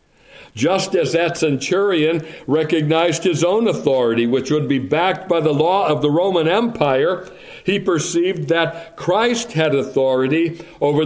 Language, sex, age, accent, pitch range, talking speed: English, male, 60-79, American, 110-155 Hz, 140 wpm